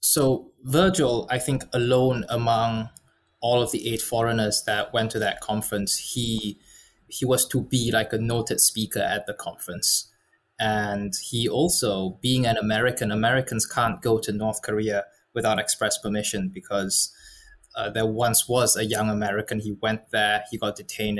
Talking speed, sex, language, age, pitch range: 160 wpm, male, English, 20-39, 105-125 Hz